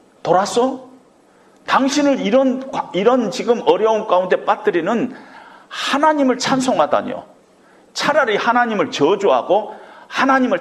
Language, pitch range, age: Korean, 180-275 Hz, 40-59